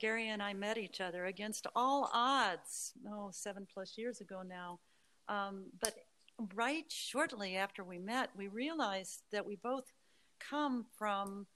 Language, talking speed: Dutch, 150 wpm